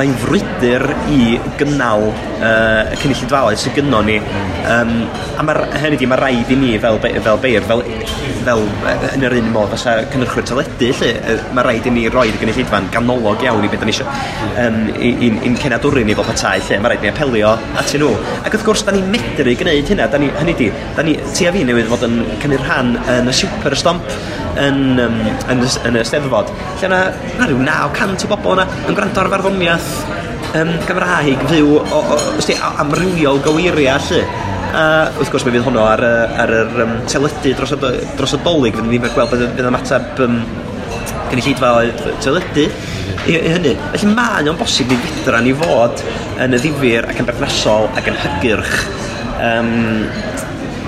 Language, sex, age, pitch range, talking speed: English, male, 20-39, 115-145 Hz, 165 wpm